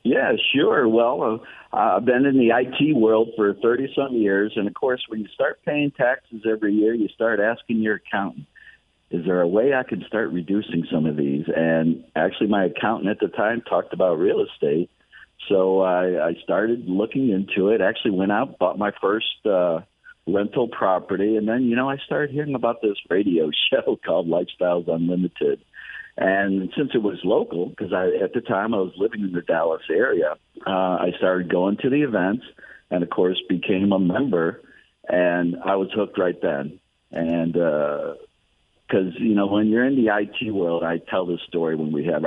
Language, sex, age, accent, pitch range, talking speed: English, male, 50-69, American, 85-115 Hz, 190 wpm